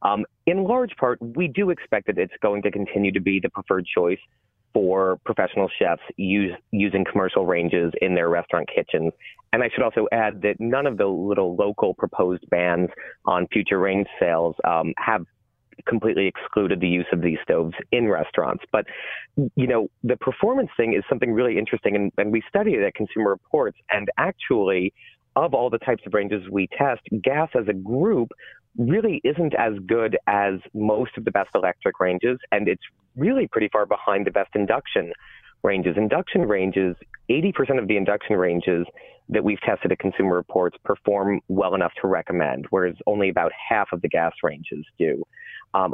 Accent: American